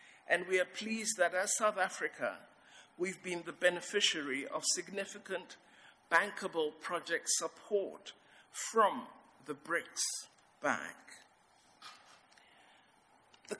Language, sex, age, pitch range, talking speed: English, male, 60-79, 170-225 Hz, 95 wpm